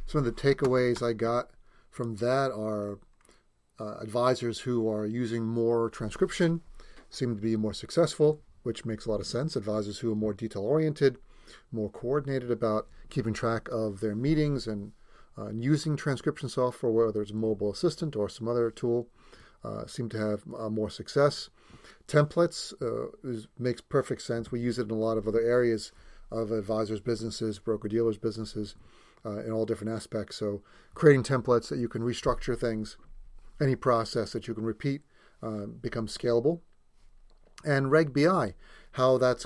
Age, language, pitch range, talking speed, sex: 40-59, English, 110-130 Hz, 160 wpm, male